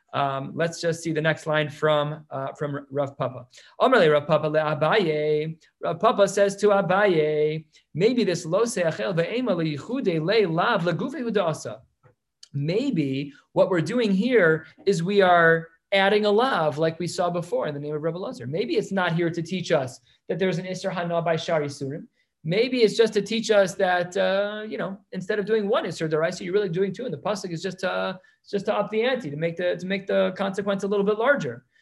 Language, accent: English, American